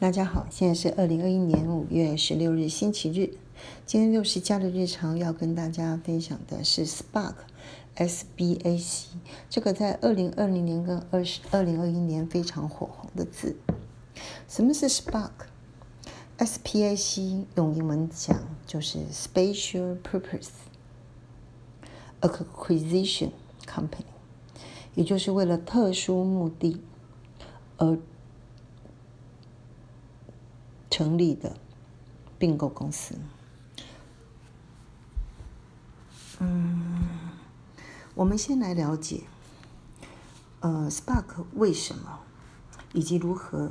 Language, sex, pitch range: Chinese, female, 140-180 Hz